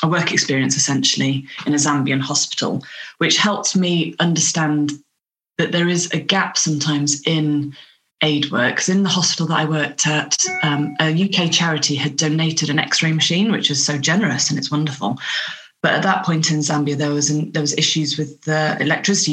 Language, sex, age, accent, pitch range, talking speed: English, female, 20-39, British, 145-165 Hz, 185 wpm